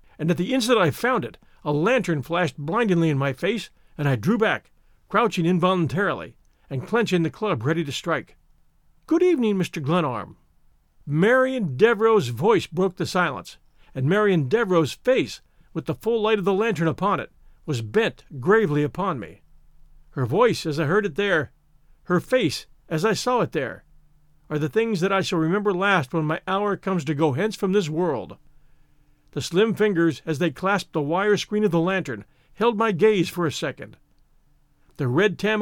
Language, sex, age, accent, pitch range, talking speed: English, male, 50-69, American, 145-205 Hz, 180 wpm